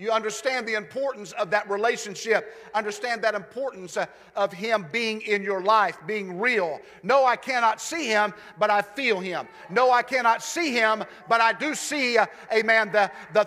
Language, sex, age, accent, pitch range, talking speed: English, male, 50-69, American, 190-245 Hz, 185 wpm